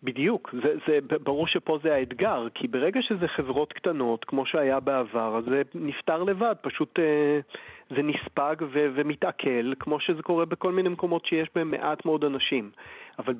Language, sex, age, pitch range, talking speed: Hebrew, male, 40-59, 140-200 Hz, 160 wpm